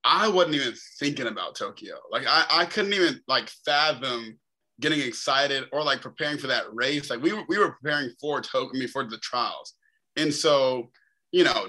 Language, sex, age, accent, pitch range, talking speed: English, male, 20-39, American, 120-145 Hz, 180 wpm